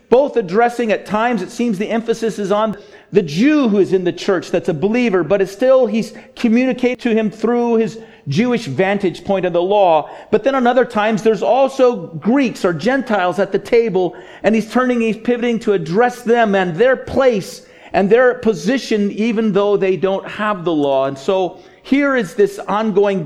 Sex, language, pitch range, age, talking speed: male, English, 175-230 Hz, 40-59, 185 wpm